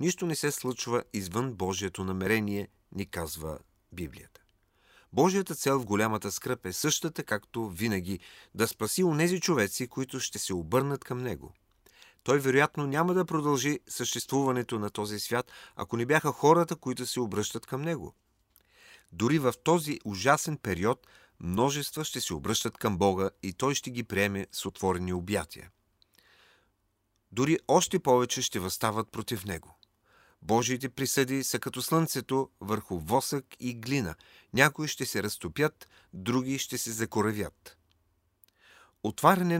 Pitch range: 100-135 Hz